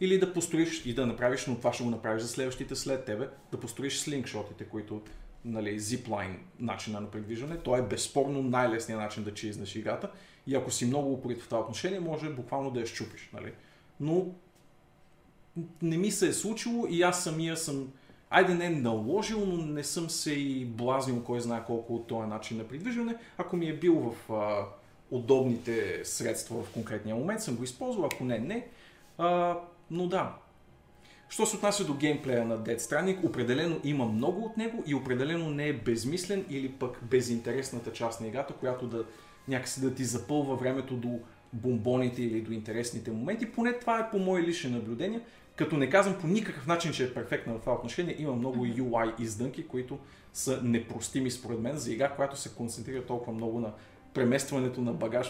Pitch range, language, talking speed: 115-165 Hz, Bulgarian, 180 wpm